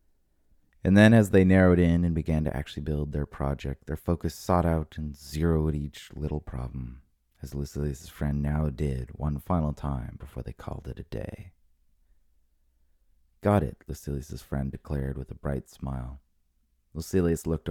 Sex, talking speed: male, 160 wpm